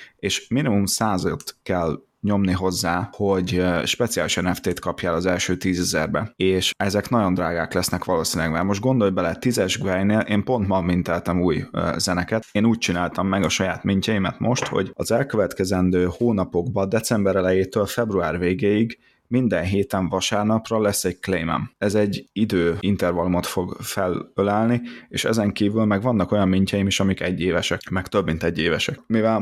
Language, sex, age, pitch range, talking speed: Hungarian, male, 20-39, 90-105 Hz, 155 wpm